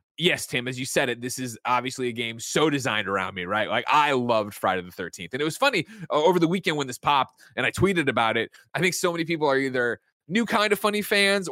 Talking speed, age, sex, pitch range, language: 255 wpm, 20-39, male, 115-150 Hz, English